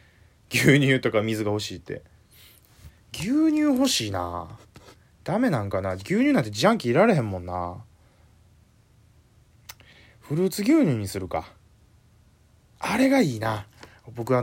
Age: 20-39